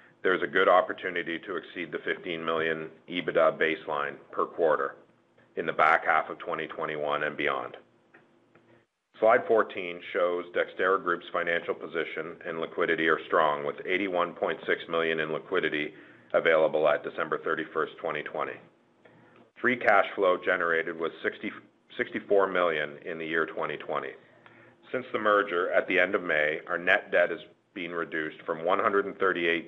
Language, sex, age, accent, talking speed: English, male, 40-59, American, 140 wpm